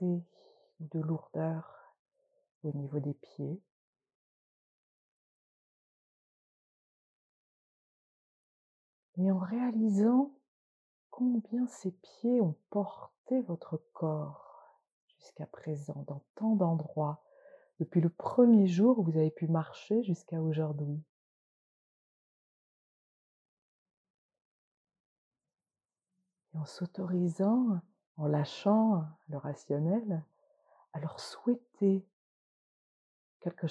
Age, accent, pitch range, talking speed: 40-59, French, 150-190 Hz, 75 wpm